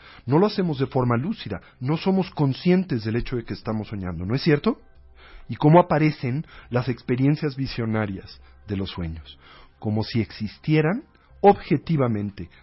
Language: Spanish